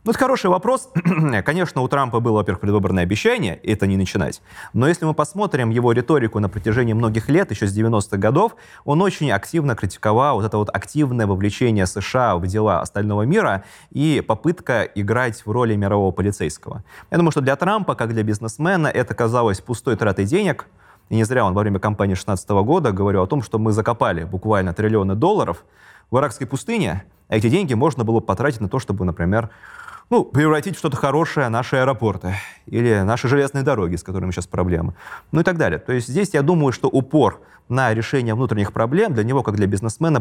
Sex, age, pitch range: male, 20-39, 100-140 Hz